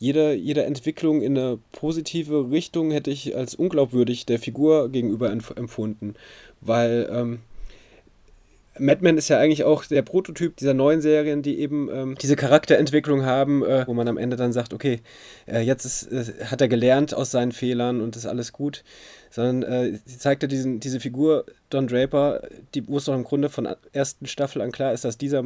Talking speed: 185 wpm